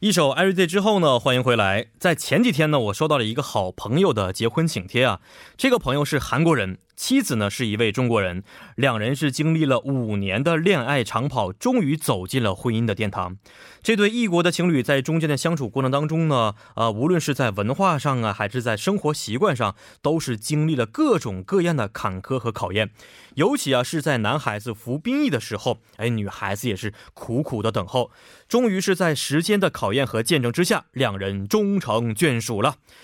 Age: 20-39